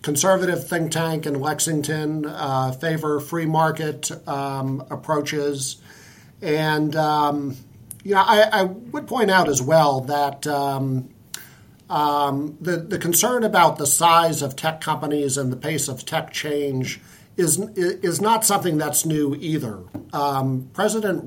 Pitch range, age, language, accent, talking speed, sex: 130-160 Hz, 50-69, English, American, 135 wpm, male